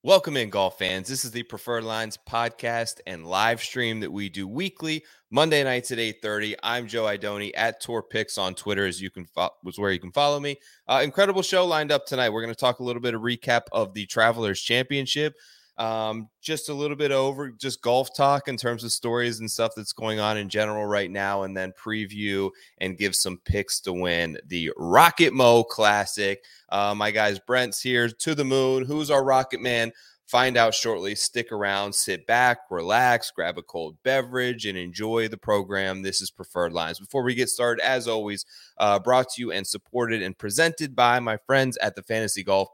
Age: 20-39